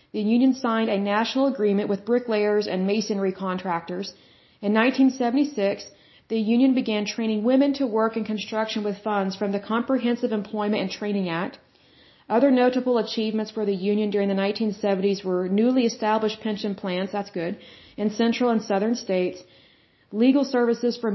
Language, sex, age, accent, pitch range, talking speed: Hindi, female, 40-59, American, 200-230 Hz, 155 wpm